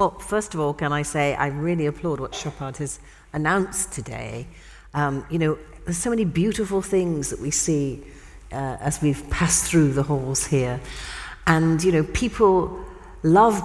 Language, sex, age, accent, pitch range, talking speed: English, female, 50-69, British, 145-190 Hz, 170 wpm